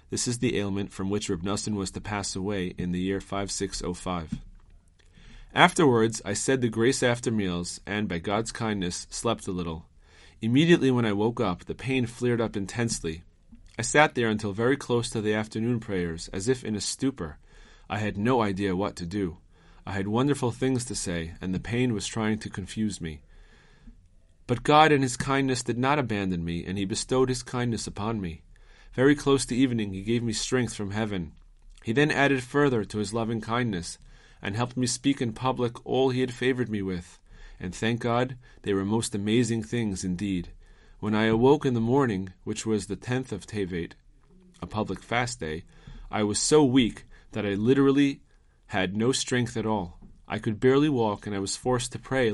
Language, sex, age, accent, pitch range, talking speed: English, male, 40-59, American, 95-125 Hz, 195 wpm